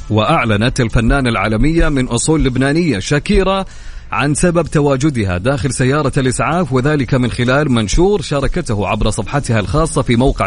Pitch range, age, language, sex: 115-160 Hz, 30-49, Arabic, male